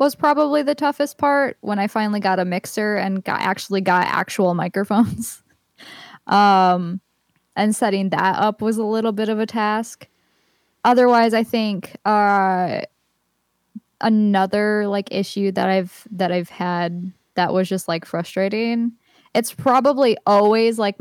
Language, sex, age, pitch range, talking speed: English, female, 10-29, 180-220 Hz, 145 wpm